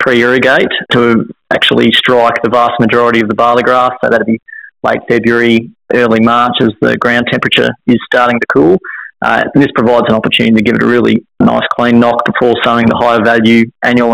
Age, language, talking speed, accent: 20-39, English, 195 wpm, Australian